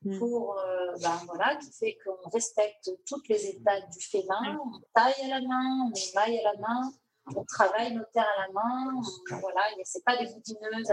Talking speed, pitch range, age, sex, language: 200 wpm, 195-255 Hz, 40-59, female, French